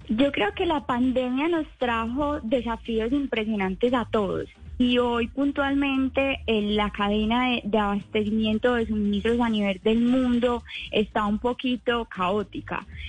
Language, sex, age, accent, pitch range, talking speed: Spanish, female, 20-39, Colombian, 225-275 Hz, 140 wpm